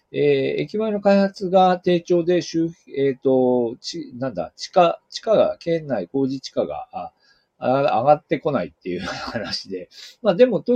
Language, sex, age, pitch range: Japanese, male, 40-59, 135-190 Hz